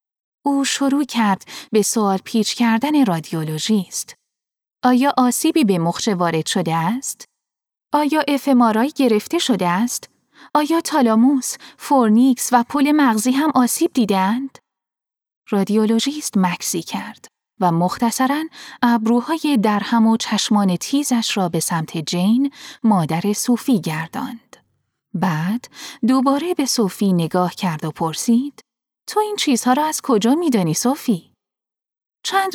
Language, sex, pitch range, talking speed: Persian, female, 190-275 Hz, 115 wpm